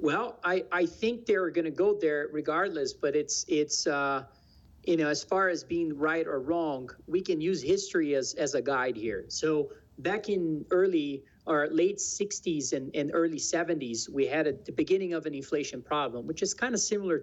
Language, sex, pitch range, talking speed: English, male, 145-200 Hz, 200 wpm